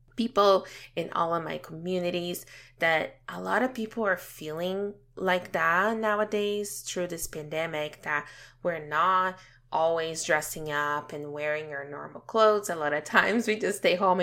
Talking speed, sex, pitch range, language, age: 160 wpm, female, 145-190 Hz, English, 20-39